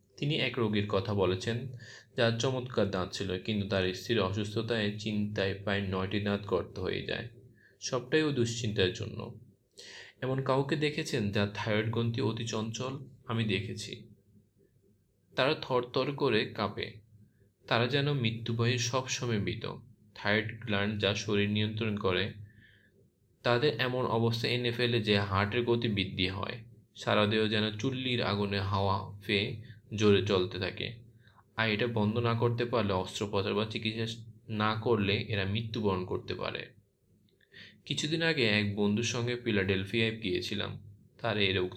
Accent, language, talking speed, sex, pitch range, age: native, Bengali, 130 wpm, male, 100-120 Hz, 20-39